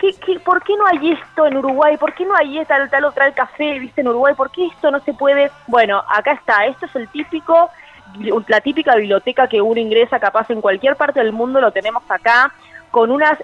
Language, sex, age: Spanish, female, 20-39